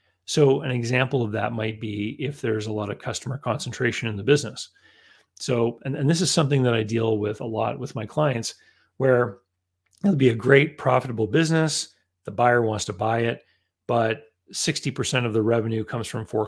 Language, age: English, 40-59